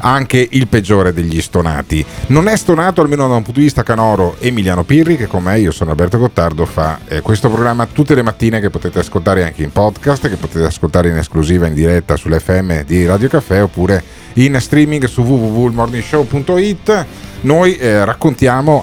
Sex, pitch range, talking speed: male, 95-135 Hz, 180 wpm